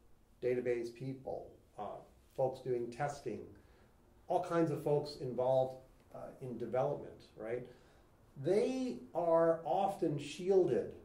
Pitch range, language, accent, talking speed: 125-185 Hz, English, American, 105 wpm